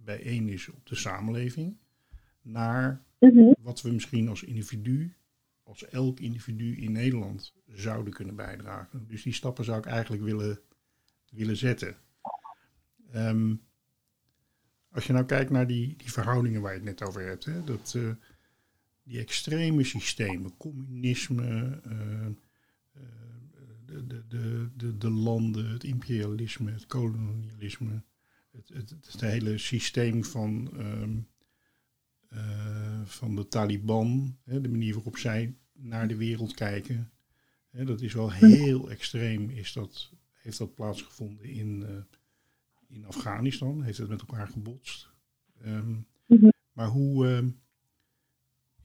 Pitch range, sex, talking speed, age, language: 110-130 Hz, male, 125 wpm, 60-79, Dutch